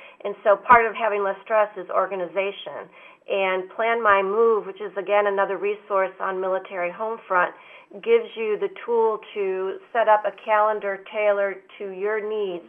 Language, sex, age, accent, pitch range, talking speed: English, female, 40-59, American, 185-215 Hz, 165 wpm